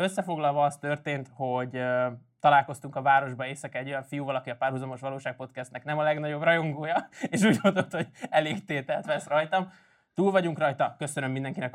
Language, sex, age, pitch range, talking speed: Hungarian, male, 20-39, 135-175 Hz, 175 wpm